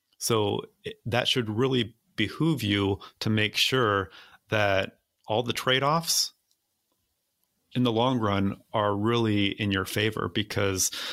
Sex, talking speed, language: male, 125 wpm, English